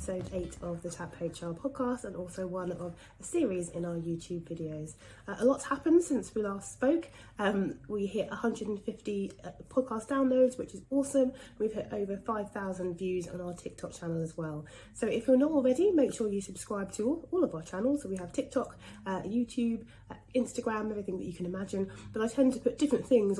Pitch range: 175-245 Hz